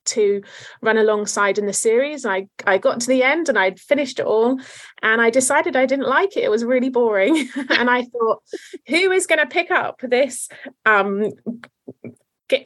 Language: English